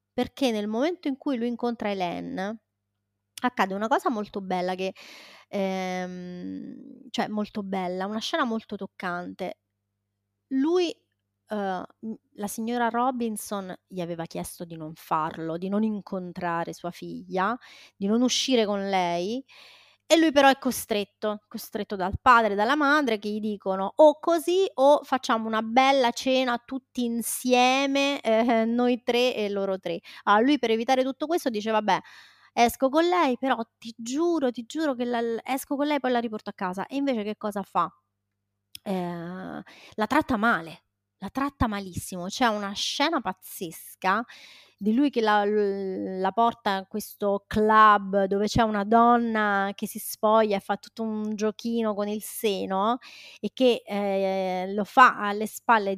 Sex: female